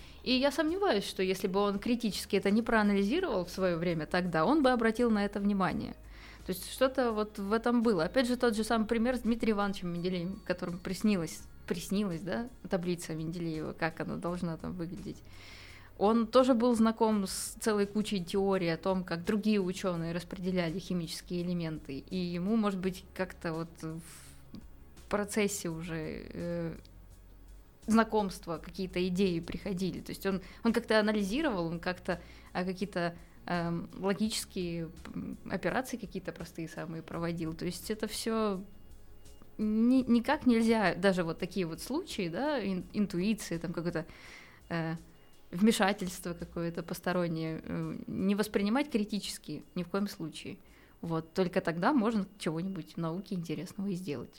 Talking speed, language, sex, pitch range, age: 145 wpm, Russian, female, 170-215 Hz, 20-39